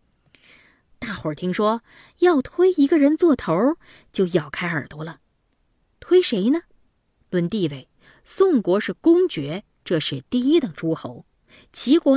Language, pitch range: Chinese, 165-260 Hz